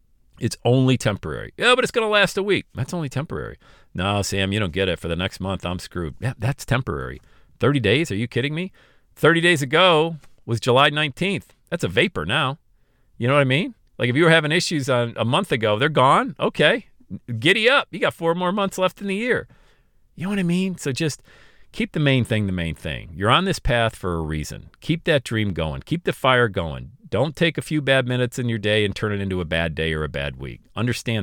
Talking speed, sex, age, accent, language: 235 wpm, male, 50-69, American, English